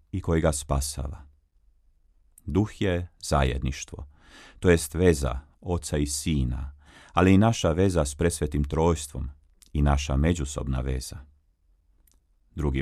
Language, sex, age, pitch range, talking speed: Croatian, male, 40-59, 70-85 Hz, 110 wpm